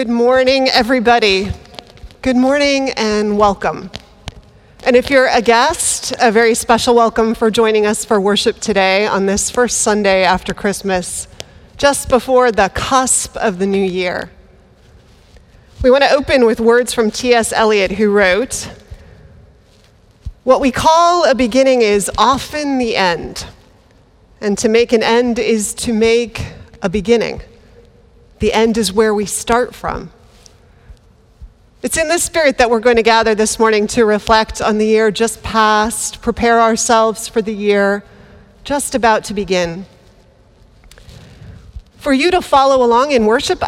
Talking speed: 145 wpm